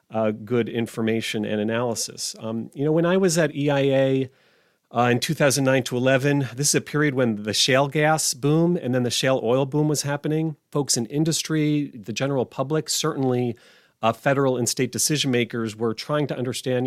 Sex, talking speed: male, 185 wpm